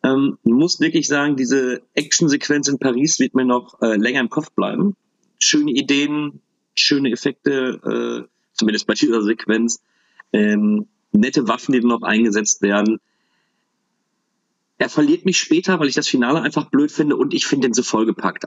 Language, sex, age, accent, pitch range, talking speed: German, male, 40-59, German, 105-140 Hz, 160 wpm